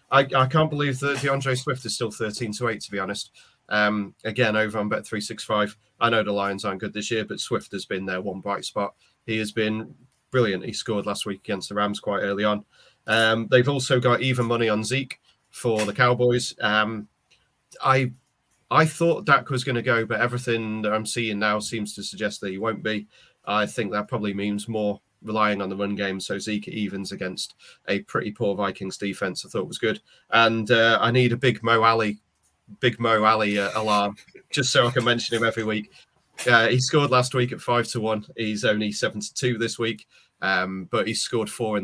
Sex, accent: male, British